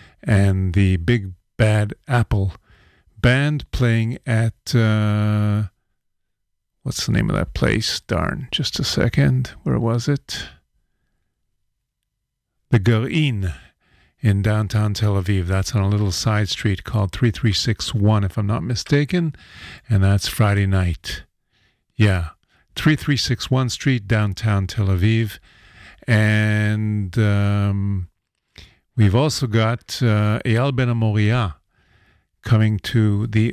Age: 50-69